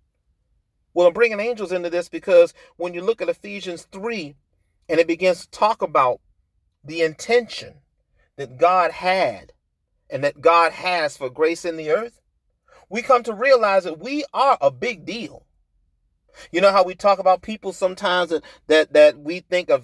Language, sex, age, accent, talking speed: English, male, 40-59, American, 170 wpm